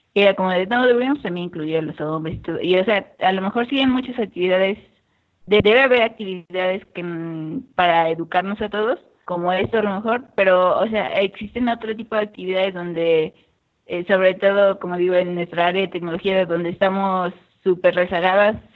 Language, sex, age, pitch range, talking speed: Spanish, female, 20-39, 175-205 Hz, 180 wpm